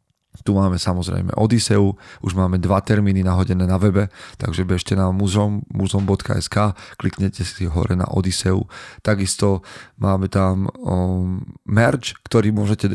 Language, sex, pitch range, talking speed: Slovak, male, 90-105 Hz, 130 wpm